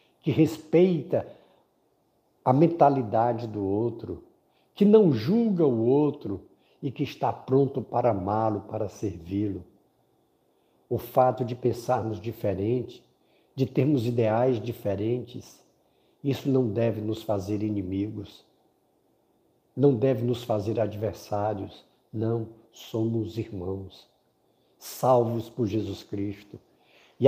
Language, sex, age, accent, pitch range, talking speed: Portuguese, male, 60-79, Brazilian, 100-130 Hz, 105 wpm